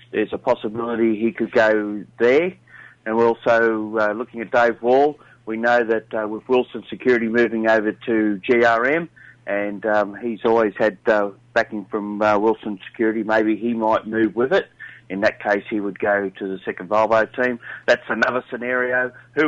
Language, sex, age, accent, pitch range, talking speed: English, male, 40-59, Australian, 110-120 Hz, 180 wpm